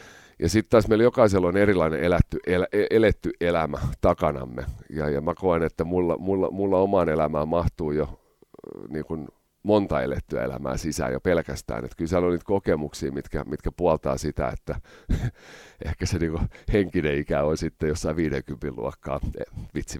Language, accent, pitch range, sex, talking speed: Finnish, native, 75-95 Hz, male, 160 wpm